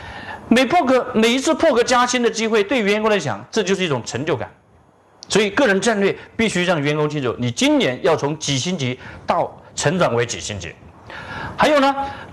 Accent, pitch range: native, 175-270 Hz